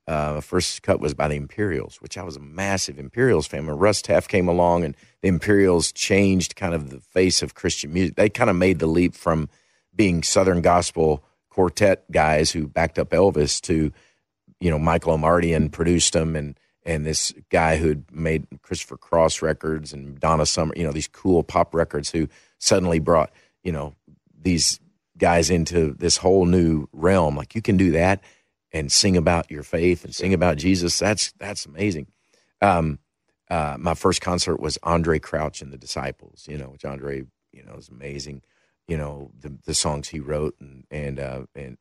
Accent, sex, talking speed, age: American, male, 190 wpm, 40-59